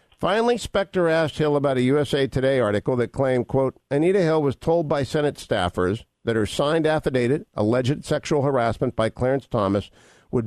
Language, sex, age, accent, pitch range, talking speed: English, male, 50-69, American, 120-155 Hz, 170 wpm